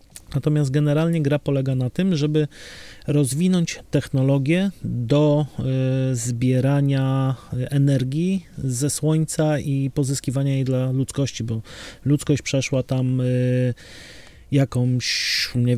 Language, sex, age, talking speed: Polish, male, 30-49, 95 wpm